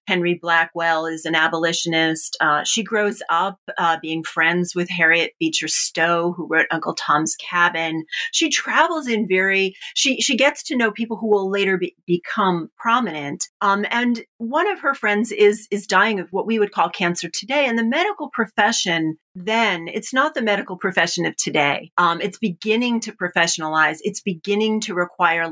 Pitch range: 165-220 Hz